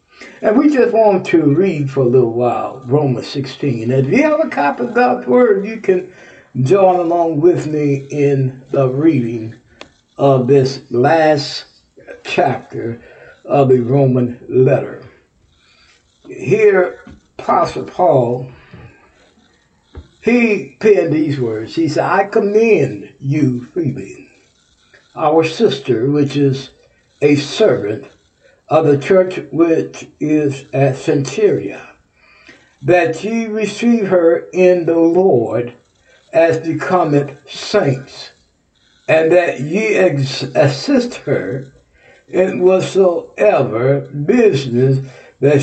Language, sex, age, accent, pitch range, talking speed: English, male, 60-79, American, 135-190 Hz, 110 wpm